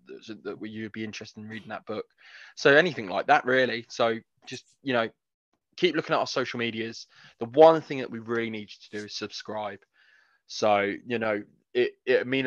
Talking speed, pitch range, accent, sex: 195 wpm, 105-120 Hz, British, male